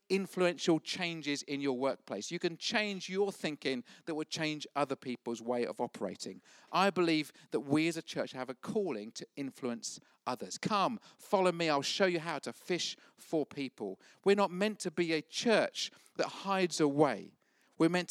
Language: English